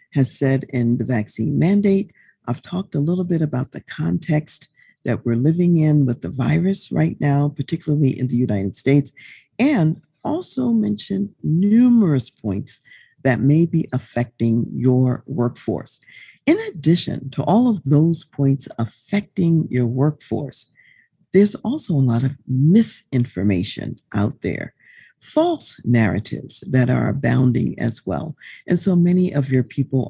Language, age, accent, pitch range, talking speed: English, 50-69, American, 125-175 Hz, 140 wpm